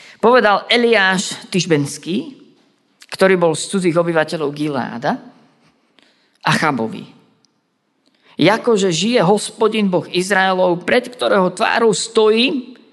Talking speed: 95 wpm